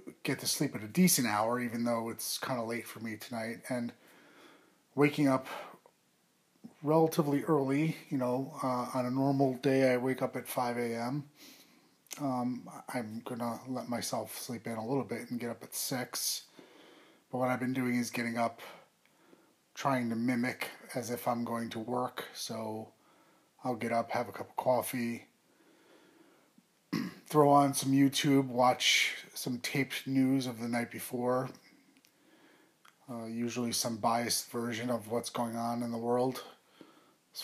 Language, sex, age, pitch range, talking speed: English, male, 30-49, 115-135 Hz, 160 wpm